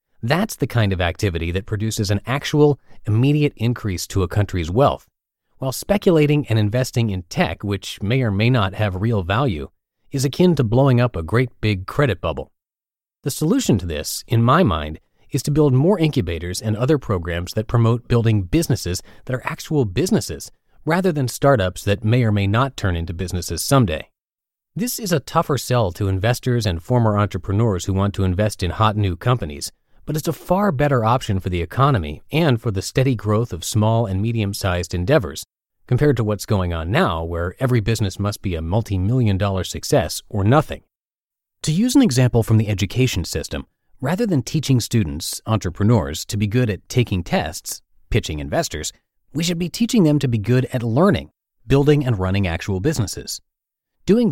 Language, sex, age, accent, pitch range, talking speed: English, male, 30-49, American, 95-130 Hz, 180 wpm